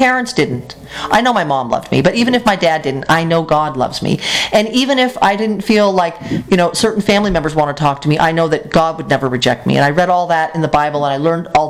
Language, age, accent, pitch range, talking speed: English, 40-59, American, 165-215 Hz, 285 wpm